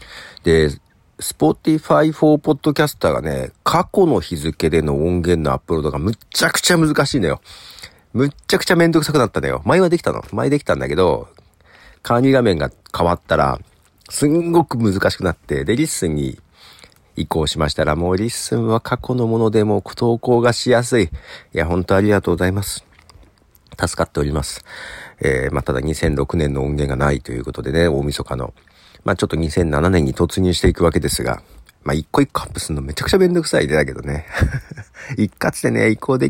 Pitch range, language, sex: 75-105 Hz, Japanese, male